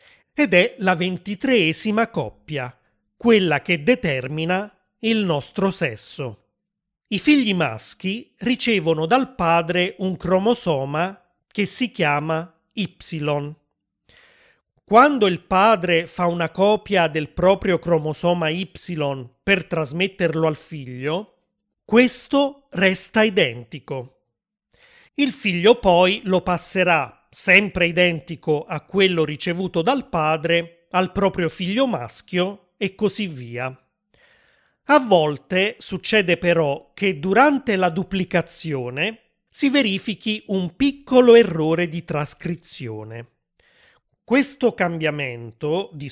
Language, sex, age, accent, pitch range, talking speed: Italian, male, 30-49, native, 160-210 Hz, 100 wpm